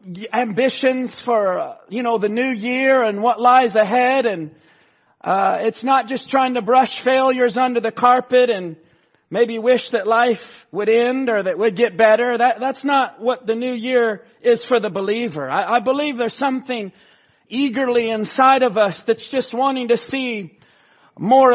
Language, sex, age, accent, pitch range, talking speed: English, male, 40-59, American, 215-255 Hz, 170 wpm